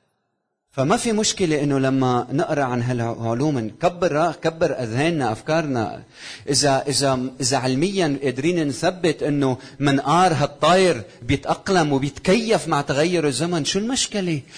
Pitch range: 145-185 Hz